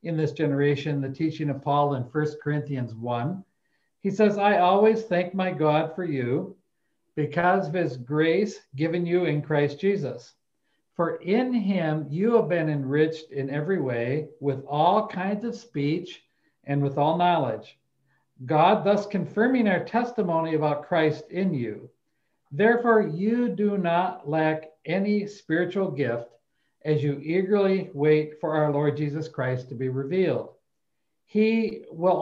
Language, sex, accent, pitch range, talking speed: English, male, American, 145-185 Hz, 145 wpm